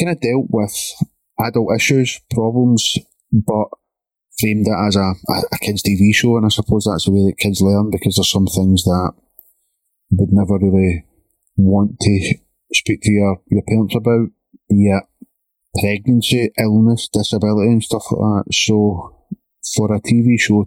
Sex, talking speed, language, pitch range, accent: male, 160 wpm, English, 100-115 Hz, British